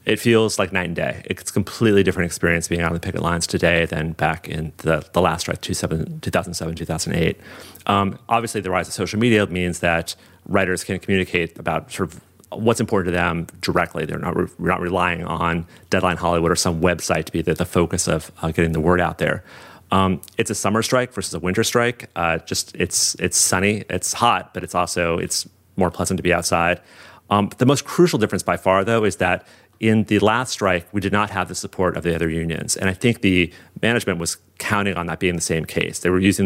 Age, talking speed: 30-49, 225 wpm